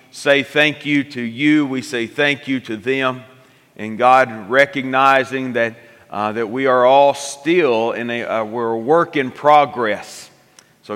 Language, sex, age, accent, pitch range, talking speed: English, male, 40-59, American, 115-135 Hz, 165 wpm